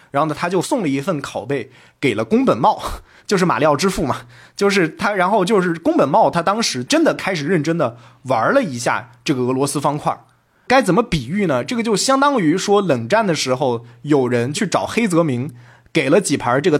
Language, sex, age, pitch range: Chinese, male, 20-39, 130-195 Hz